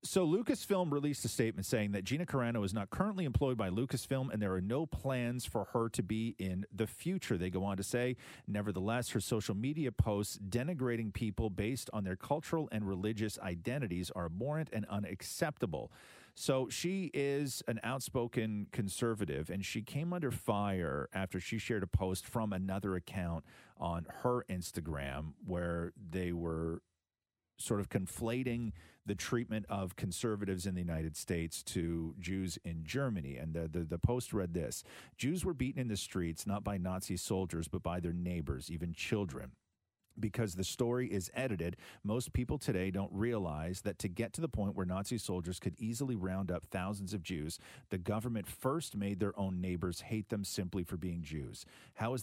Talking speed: 175 wpm